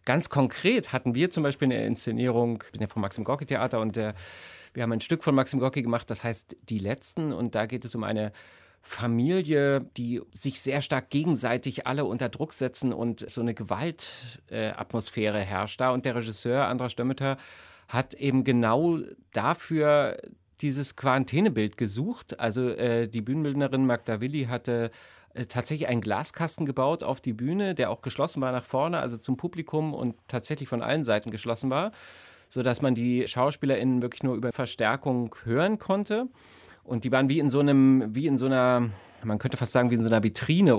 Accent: German